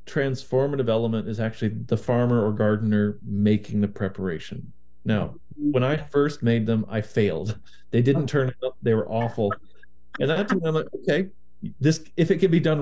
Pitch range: 105-140 Hz